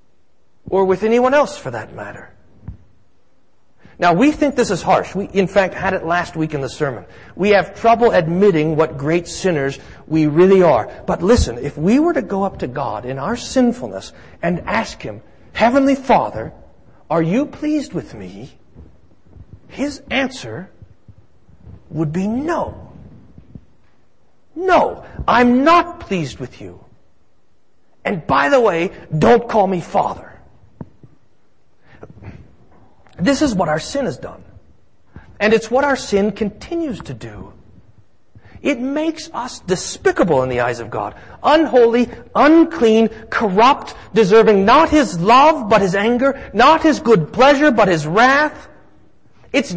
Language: English